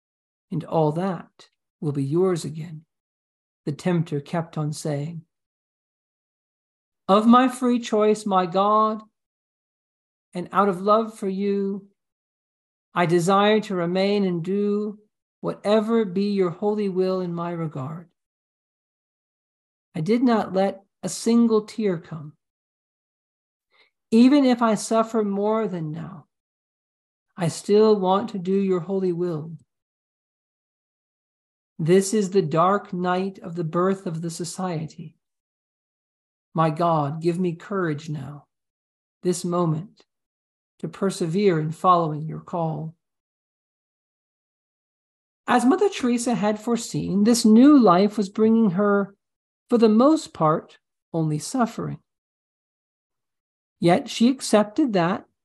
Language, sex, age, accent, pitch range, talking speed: English, male, 50-69, American, 160-210 Hz, 115 wpm